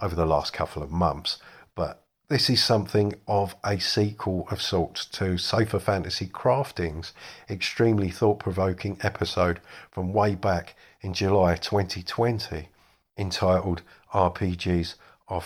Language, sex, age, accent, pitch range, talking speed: English, male, 50-69, British, 85-100 Hz, 125 wpm